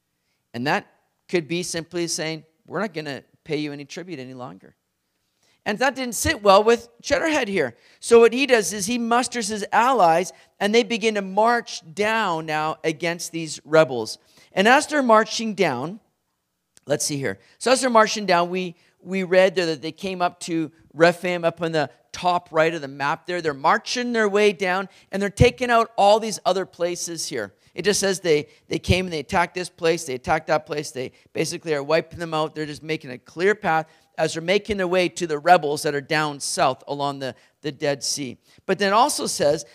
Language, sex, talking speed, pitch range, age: English, male, 205 wpm, 155-200 Hz, 40-59